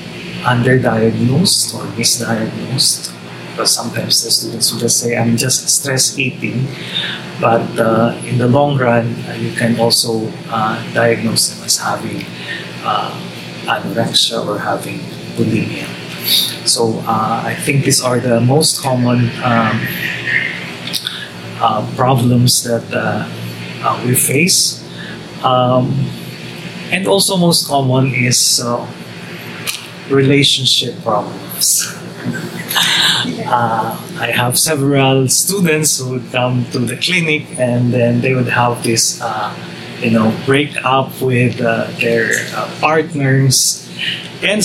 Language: English